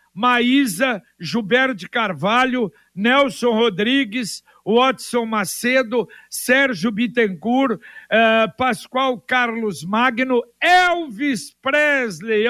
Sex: male